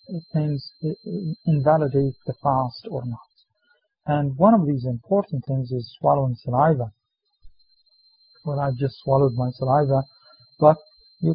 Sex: male